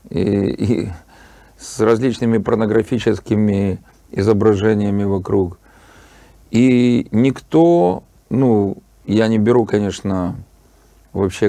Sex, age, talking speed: male, 40-59, 70 wpm